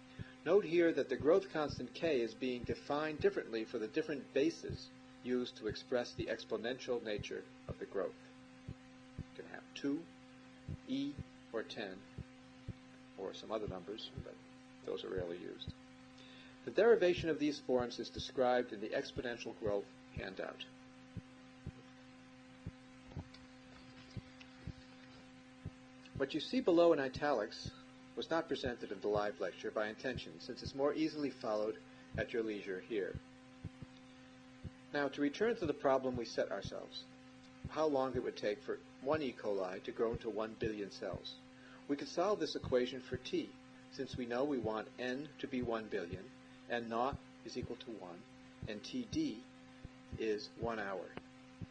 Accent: American